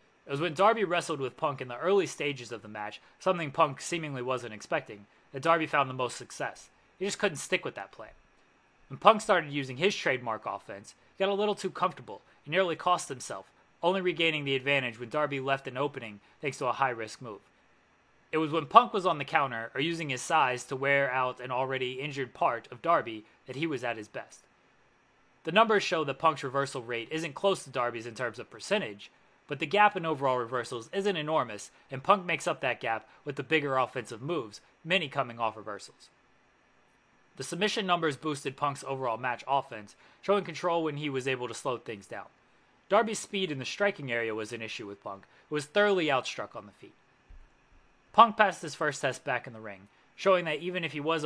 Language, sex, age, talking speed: English, male, 20-39, 210 wpm